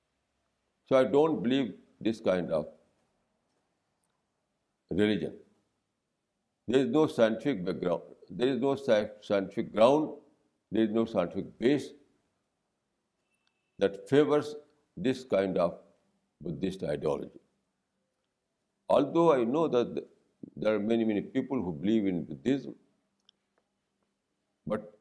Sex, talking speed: male, 105 wpm